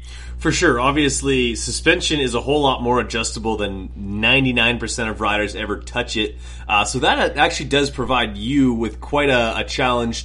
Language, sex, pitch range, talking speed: English, male, 100-125 Hz, 170 wpm